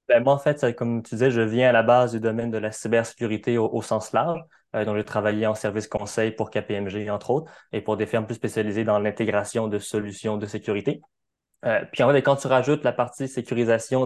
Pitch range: 110-130 Hz